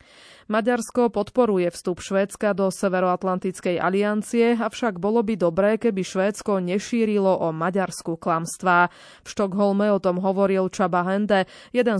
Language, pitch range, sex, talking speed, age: Slovak, 180-215 Hz, female, 125 wpm, 20-39